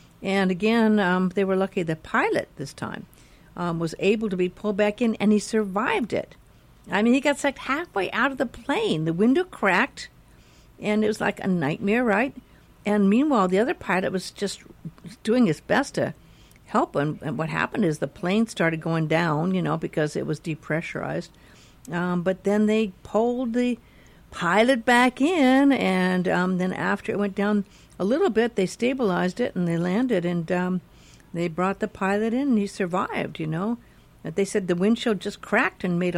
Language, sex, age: English, female, 60-79